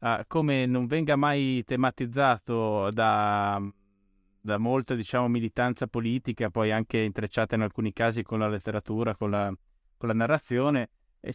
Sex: male